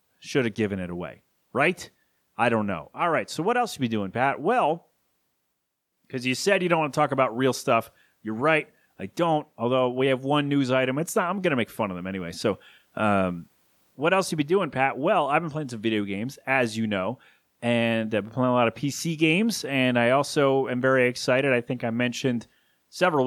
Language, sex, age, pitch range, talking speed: English, male, 30-49, 115-150 Hz, 225 wpm